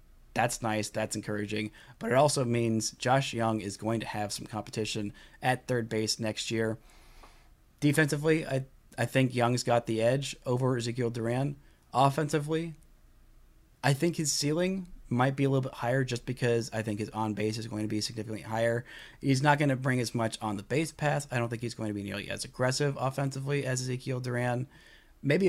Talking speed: 190 wpm